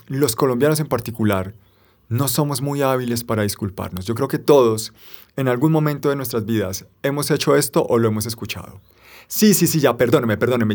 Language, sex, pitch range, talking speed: Spanish, male, 110-145 Hz, 185 wpm